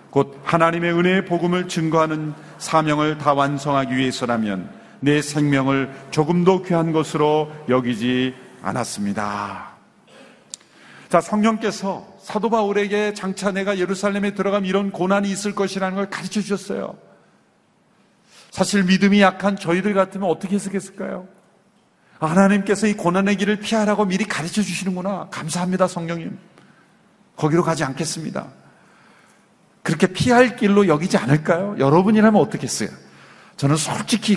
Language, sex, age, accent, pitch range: Korean, male, 40-59, native, 150-200 Hz